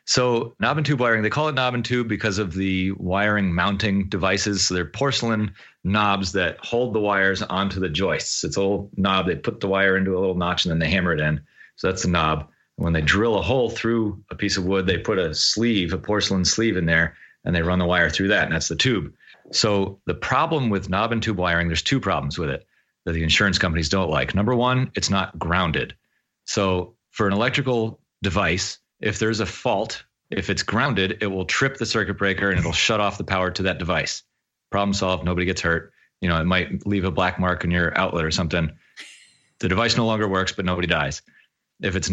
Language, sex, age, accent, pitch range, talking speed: English, male, 30-49, American, 90-110 Hz, 225 wpm